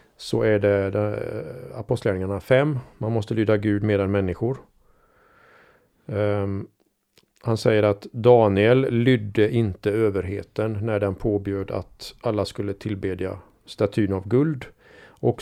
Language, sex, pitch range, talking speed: Swedish, male, 100-120 Hz, 115 wpm